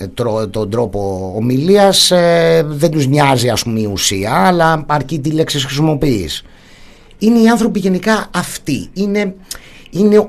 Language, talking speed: Greek, 130 wpm